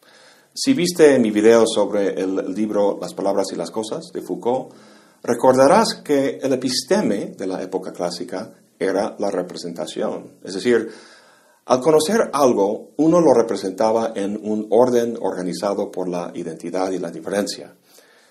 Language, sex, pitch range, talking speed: Spanish, male, 100-140 Hz, 140 wpm